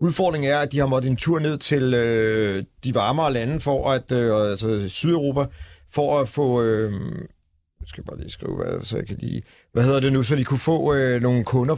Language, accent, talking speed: Danish, native, 205 wpm